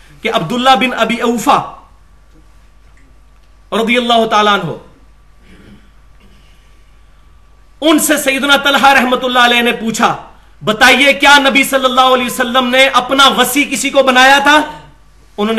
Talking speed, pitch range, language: 125 wpm, 185-255 Hz, Urdu